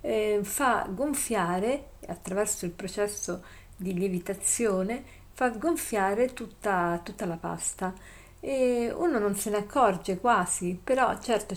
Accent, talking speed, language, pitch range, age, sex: native, 115 wpm, Italian, 190-240 Hz, 50-69, female